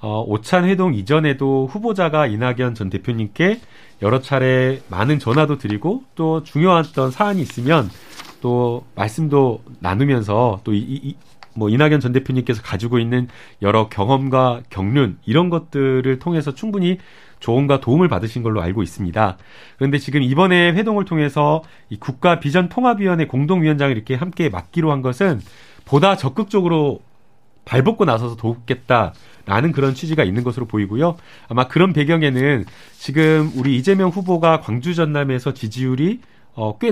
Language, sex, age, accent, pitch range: Korean, male, 30-49, native, 120-165 Hz